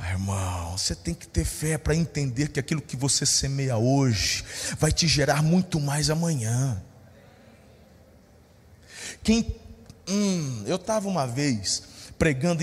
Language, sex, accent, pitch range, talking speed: Portuguese, male, Brazilian, 165-255 Hz, 130 wpm